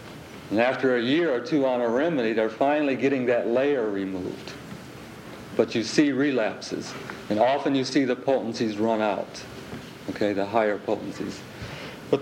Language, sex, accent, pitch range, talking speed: English, male, American, 120-150 Hz, 155 wpm